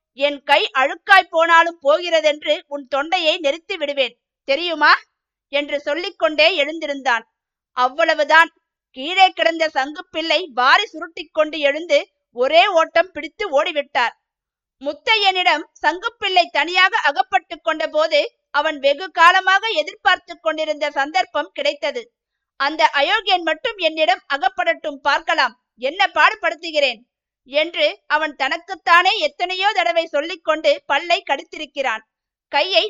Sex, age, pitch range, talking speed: female, 50-69, 285-350 Hz, 95 wpm